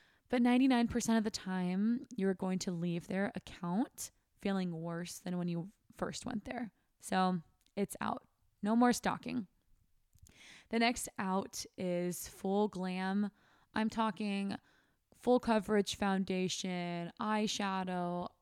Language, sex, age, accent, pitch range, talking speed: English, female, 20-39, American, 185-230 Hz, 120 wpm